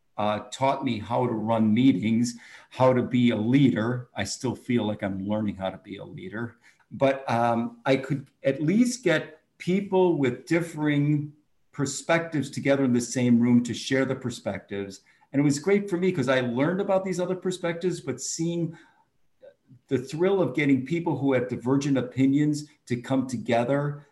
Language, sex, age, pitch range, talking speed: English, male, 50-69, 115-145 Hz, 175 wpm